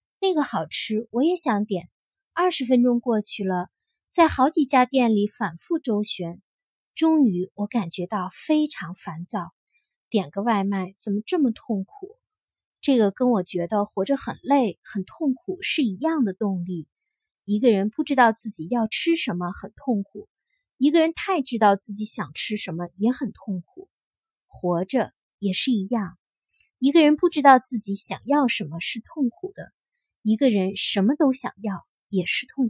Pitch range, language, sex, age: 190-270 Hz, Chinese, female, 20-39